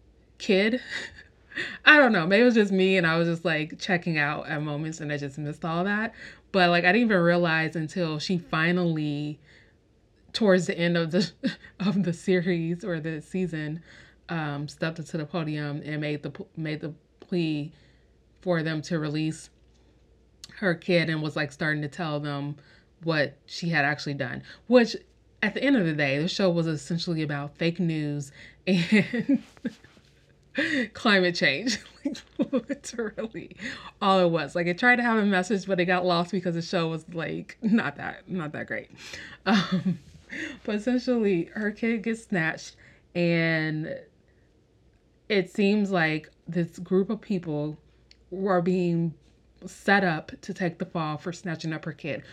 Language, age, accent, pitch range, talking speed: English, 20-39, American, 155-190 Hz, 165 wpm